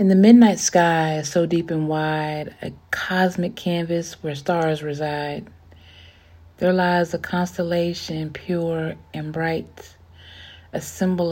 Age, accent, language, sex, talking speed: 30-49, American, English, female, 120 wpm